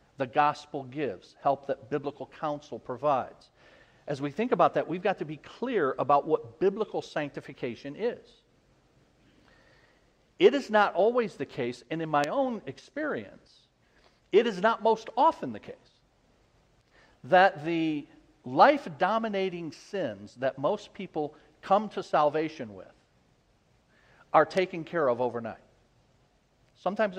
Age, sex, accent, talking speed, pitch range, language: 50-69, male, American, 130 wpm, 130-185 Hz, English